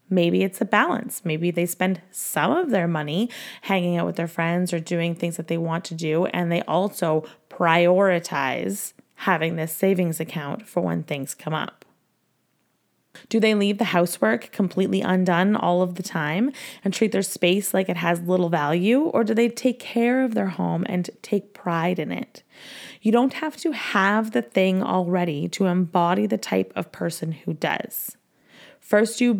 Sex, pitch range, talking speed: female, 170-215 Hz, 180 wpm